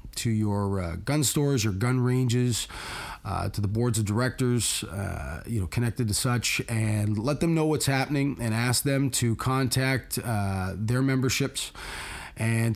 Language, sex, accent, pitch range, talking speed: English, male, American, 100-130 Hz, 165 wpm